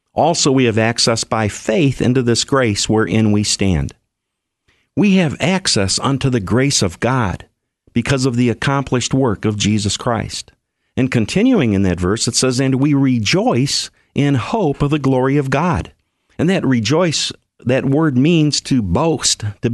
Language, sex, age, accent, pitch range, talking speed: English, male, 50-69, American, 110-145 Hz, 165 wpm